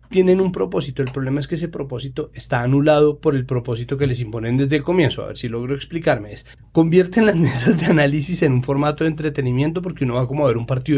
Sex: male